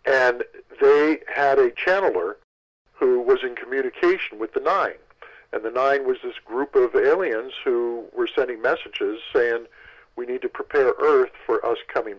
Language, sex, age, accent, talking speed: English, male, 50-69, American, 160 wpm